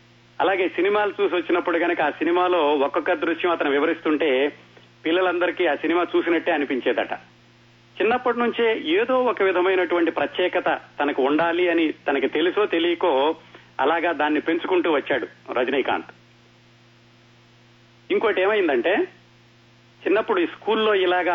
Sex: male